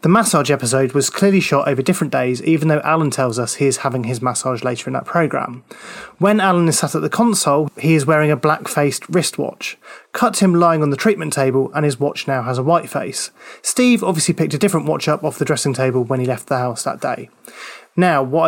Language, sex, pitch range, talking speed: English, male, 140-175 Hz, 235 wpm